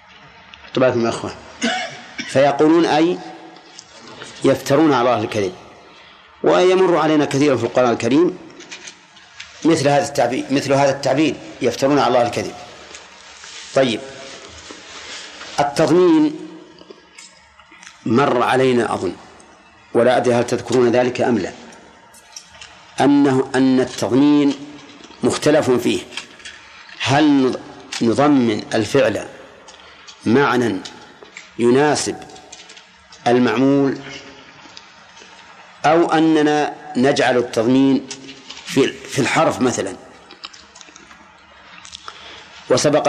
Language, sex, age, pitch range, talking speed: Arabic, male, 50-69, 125-145 Hz, 80 wpm